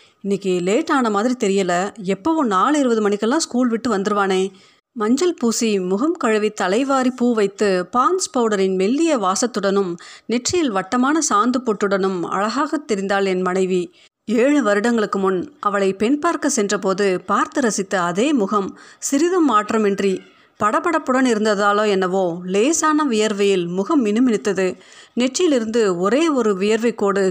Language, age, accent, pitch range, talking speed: Tamil, 30-49, native, 195-255 Hz, 125 wpm